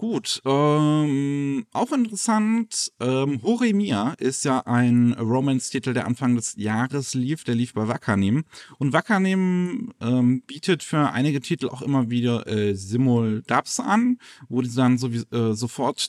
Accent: German